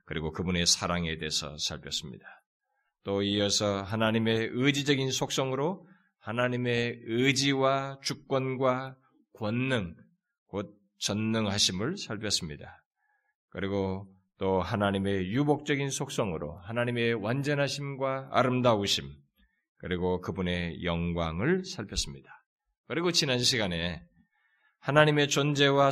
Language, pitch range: Korean, 95-145 Hz